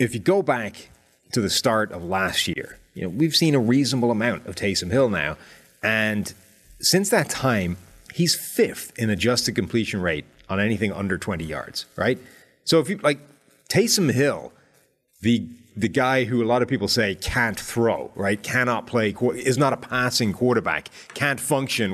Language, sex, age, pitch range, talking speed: English, male, 30-49, 105-135 Hz, 175 wpm